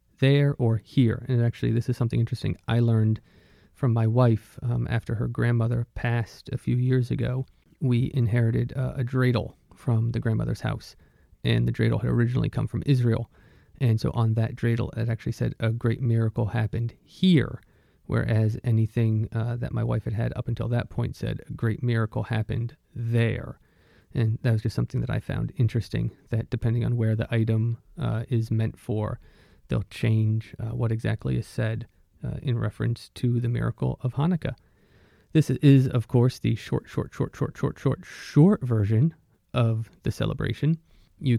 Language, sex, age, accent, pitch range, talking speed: English, male, 30-49, American, 115-125 Hz, 180 wpm